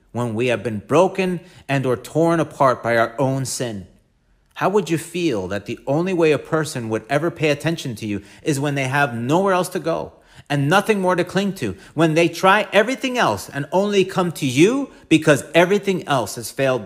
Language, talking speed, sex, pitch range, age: English, 205 wpm, male, 130-180 Hz, 40-59